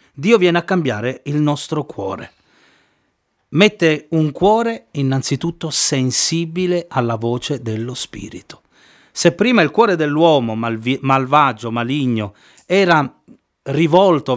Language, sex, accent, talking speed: Italian, male, native, 105 wpm